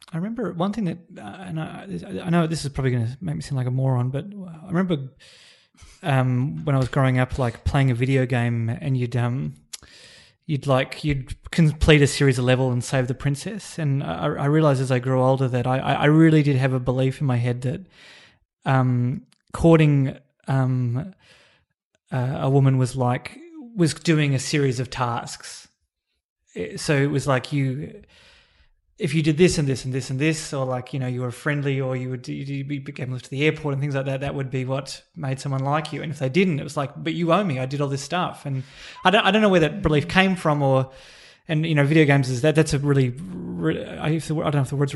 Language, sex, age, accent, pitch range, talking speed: English, male, 30-49, Australian, 130-160 Hz, 230 wpm